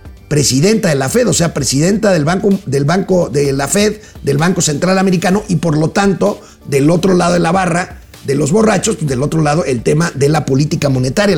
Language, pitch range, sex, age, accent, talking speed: Spanish, 150-215 Hz, male, 50-69, Mexican, 205 wpm